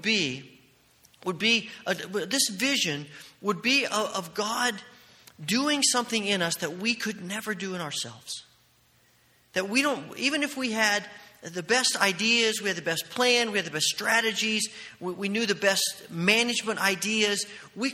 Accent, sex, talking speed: American, male, 160 wpm